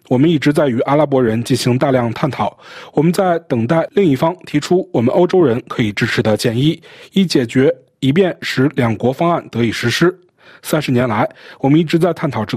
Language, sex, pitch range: Chinese, male, 125-170 Hz